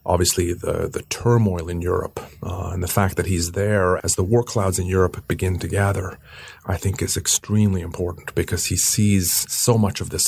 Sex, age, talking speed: male, 40-59, 200 wpm